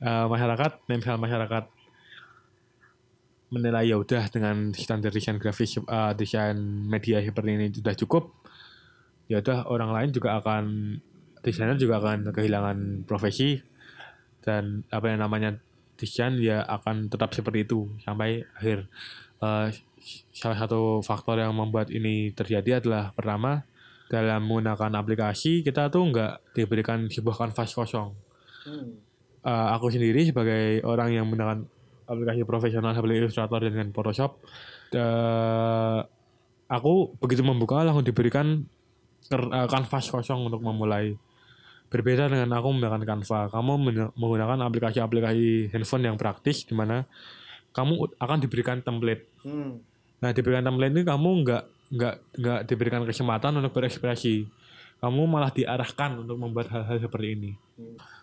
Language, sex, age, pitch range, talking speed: Indonesian, male, 20-39, 110-125 Hz, 125 wpm